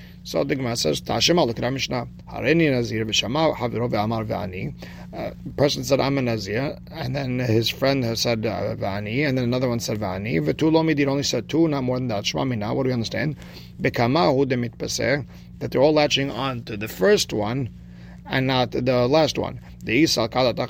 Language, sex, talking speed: English, male, 170 wpm